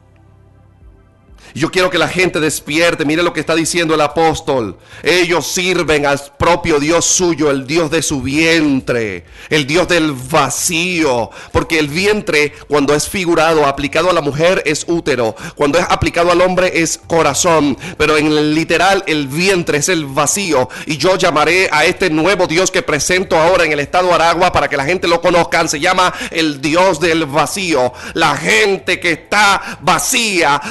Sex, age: male, 30-49